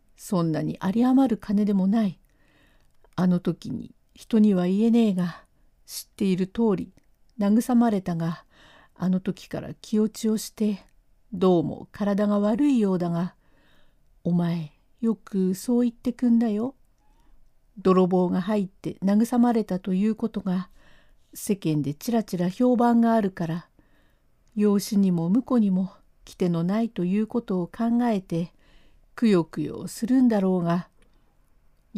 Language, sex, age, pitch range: Japanese, female, 50-69, 180-230 Hz